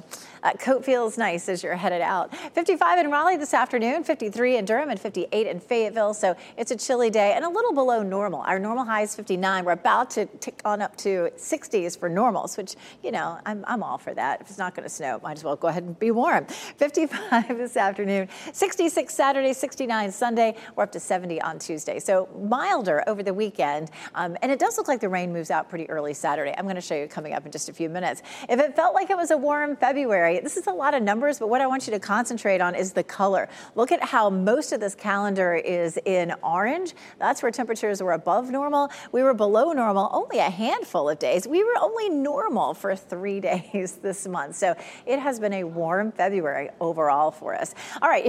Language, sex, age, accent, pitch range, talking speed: English, female, 40-59, American, 190-270 Hz, 225 wpm